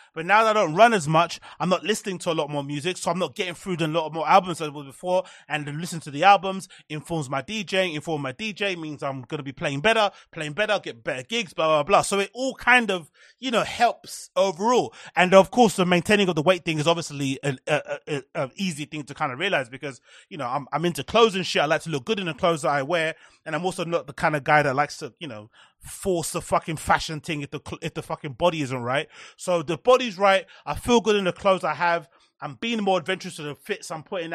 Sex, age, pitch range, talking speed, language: male, 30-49, 155-190 Hz, 265 wpm, English